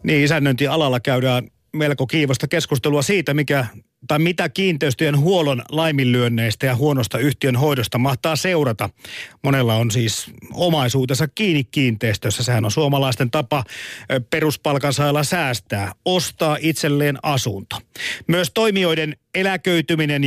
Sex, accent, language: male, native, Finnish